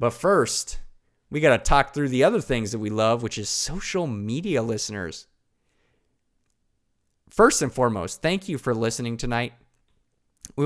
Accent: American